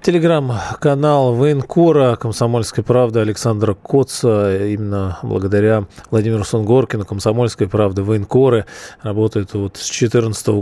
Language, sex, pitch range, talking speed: Russian, male, 100-120 Hz, 95 wpm